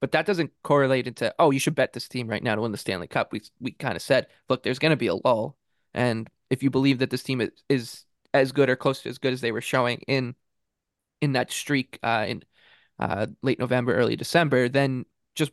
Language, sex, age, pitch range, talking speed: English, male, 20-39, 125-145 Hz, 240 wpm